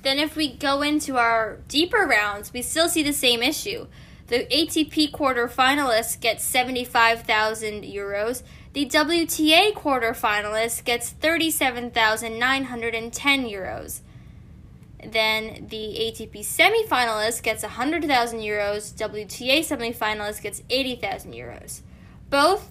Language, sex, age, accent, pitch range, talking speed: English, female, 10-29, American, 220-290 Hz, 110 wpm